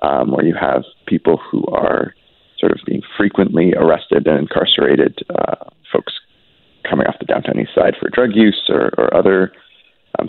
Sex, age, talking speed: male, 30-49, 170 wpm